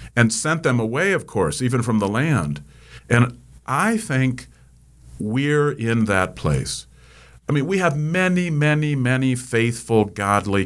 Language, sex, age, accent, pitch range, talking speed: English, male, 50-69, American, 100-145 Hz, 145 wpm